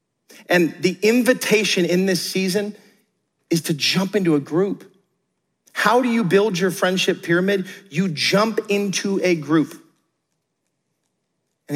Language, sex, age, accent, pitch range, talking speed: English, male, 40-59, American, 145-195 Hz, 130 wpm